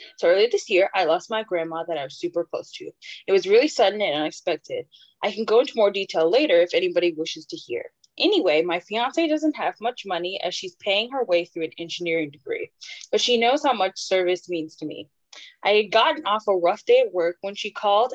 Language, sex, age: English, female, 10-29